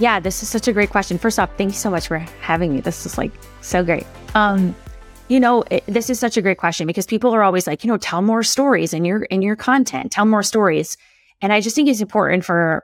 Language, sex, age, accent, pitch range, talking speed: English, female, 20-39, American, 175-220 Hz, 260 wpm